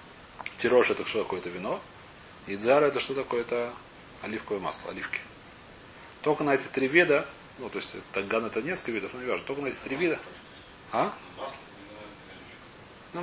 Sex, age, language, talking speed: male, 30-49, Russian, 165 wpm